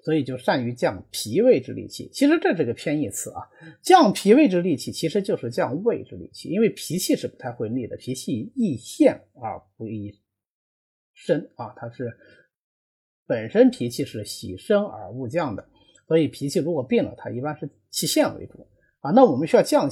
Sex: male